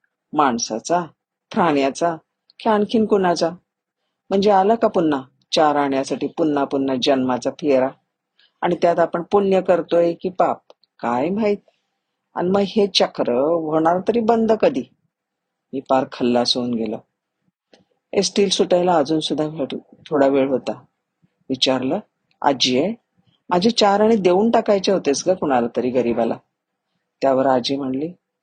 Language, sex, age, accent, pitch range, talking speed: Marathi, female, 40-59, native, 135-180 Hz, 125 wpm